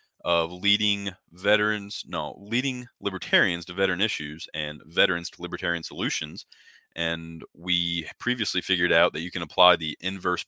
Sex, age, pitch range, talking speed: male, 20-39, 85-100 Hz, 145 wpm